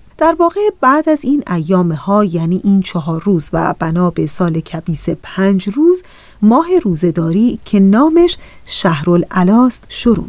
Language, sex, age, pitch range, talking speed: Persian, female, 30-49, 185-255 Hz, 145 wpm